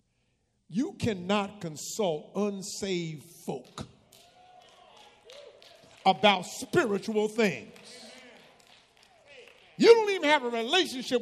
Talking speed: 75 wpm